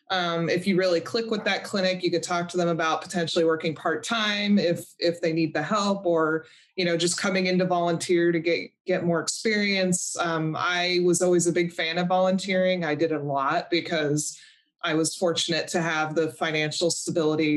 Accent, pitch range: American, 160-185 Hz